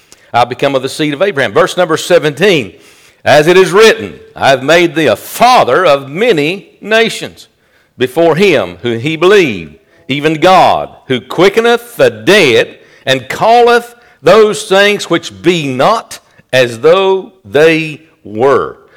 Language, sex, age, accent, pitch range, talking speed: English, male, 50-69, American, 145-205 Hz, 140 wpm